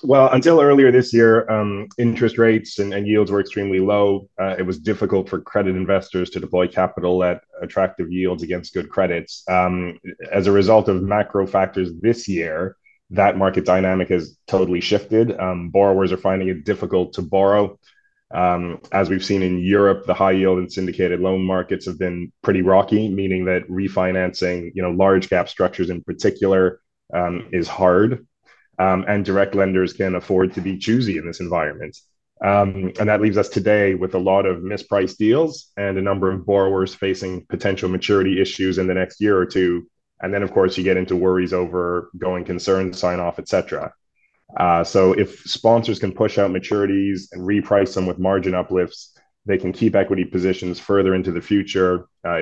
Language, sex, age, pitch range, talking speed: English, male, 20-39, 90-100 Hz, 180 wpm